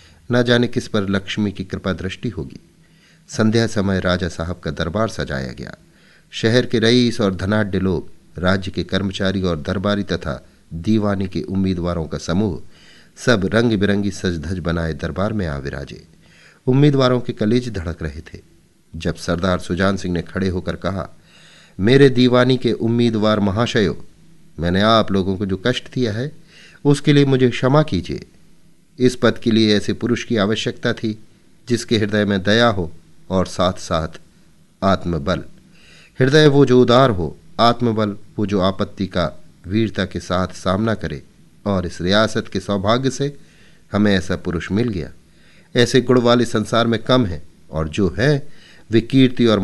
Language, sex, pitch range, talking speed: Hindi, male, 90-115 Hz, 160 wpm